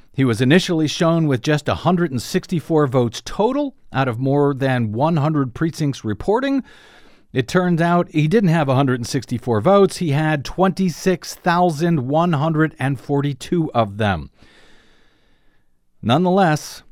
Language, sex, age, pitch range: English, male, 50-69, 125-175 Hz